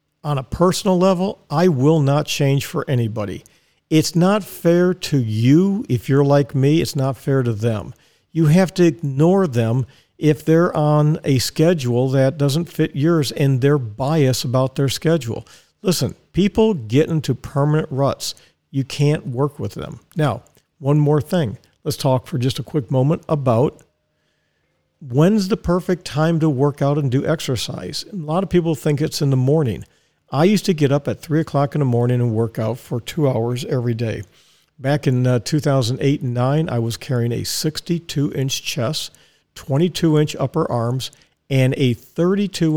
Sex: male